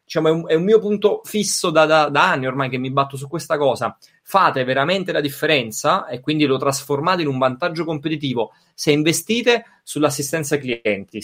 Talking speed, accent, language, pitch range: 190 wpm, native, Italian, 145-185 Hz